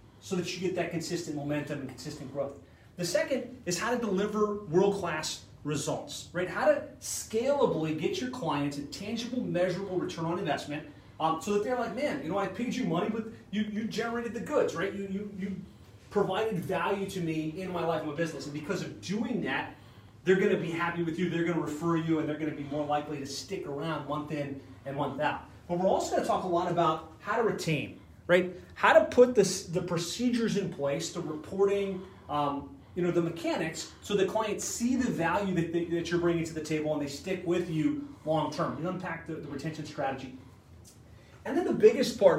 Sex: male